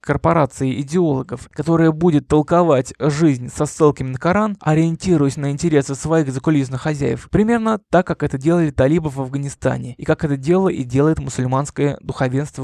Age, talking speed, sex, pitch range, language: 20-39, 150 wpm, male, 135-170 Hz, Russian